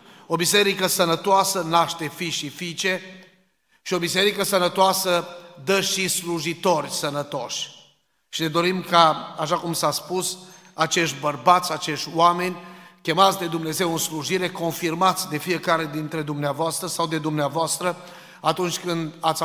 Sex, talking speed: male, 135 wpm